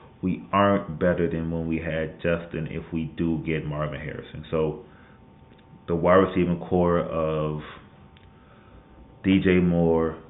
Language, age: English, 30-49